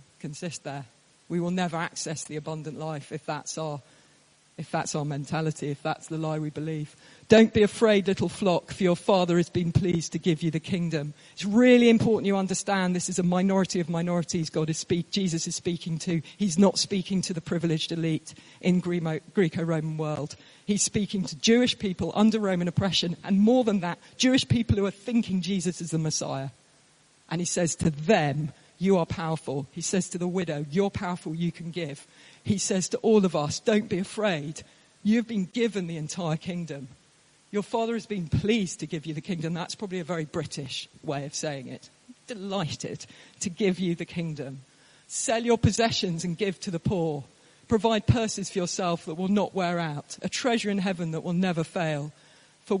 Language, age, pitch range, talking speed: English, 40-59, 155-195 Hz, 195 wpm